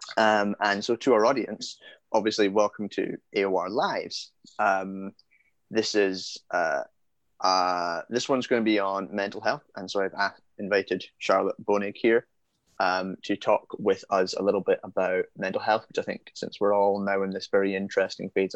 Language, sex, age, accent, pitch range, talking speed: English, male, 20-39, British, 100-125 Hz, 175 wpm